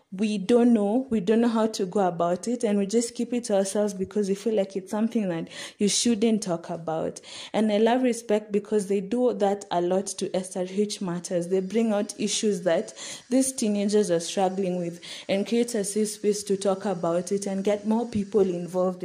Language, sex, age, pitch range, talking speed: English, female, 20-39, 180-215 Hz, 210 wpm